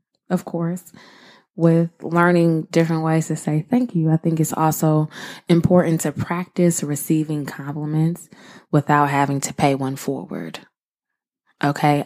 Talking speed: 130 wpm